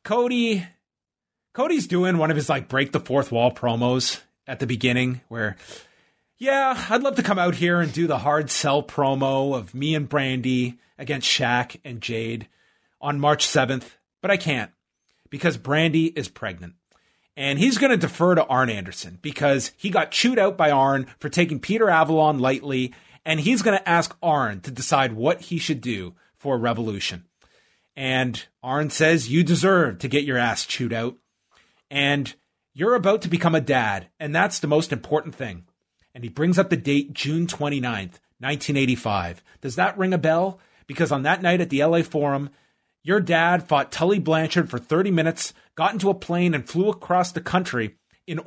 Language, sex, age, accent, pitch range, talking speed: English, male, 30-49, American, 125-170 Hz, 180 wpm